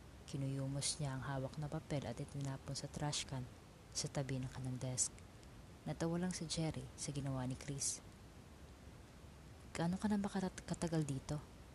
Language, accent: Filipino, native